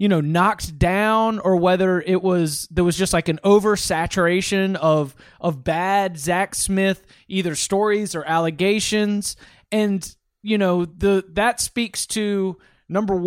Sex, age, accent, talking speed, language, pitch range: male, 30-49, American, 140 wpm, English, 160-195 Hz